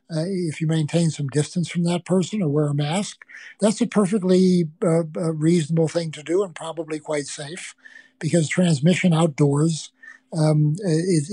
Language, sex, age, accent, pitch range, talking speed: English, male, 60-79, American, 150-175 Hz, 160 wpm